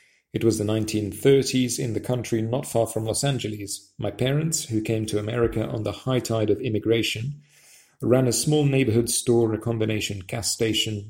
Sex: male